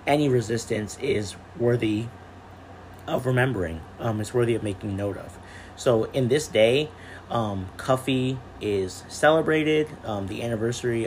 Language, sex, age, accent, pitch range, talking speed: English, male, 30-49, American, 95-115 Hz, 130 wpm